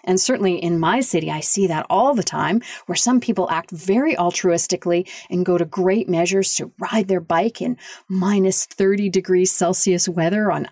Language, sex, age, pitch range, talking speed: English, female, 40-59, 175-240 Hz, 185 wpm